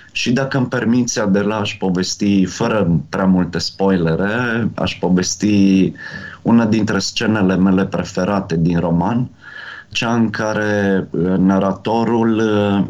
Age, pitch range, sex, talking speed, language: 30-49, 95-130 Hz, male, 110 wpm, Romanian